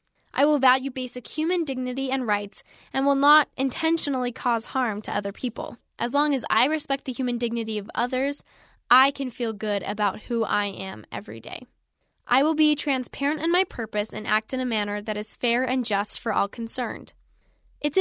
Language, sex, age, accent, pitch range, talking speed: English, female, 10-29, American, 210-265 Hz, 195 wpm